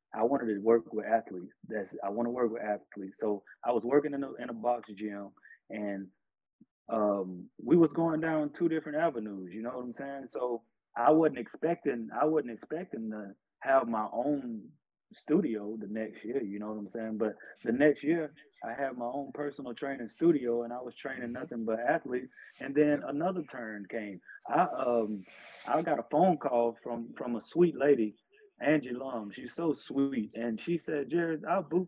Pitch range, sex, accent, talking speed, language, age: 115-155 Hz, male, American, 195 wpm, English, 30-49